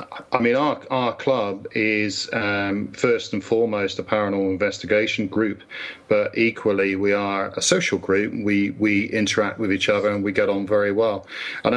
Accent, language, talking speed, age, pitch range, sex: British, English, 175 wpm, 40-59, 100-110 Hz, male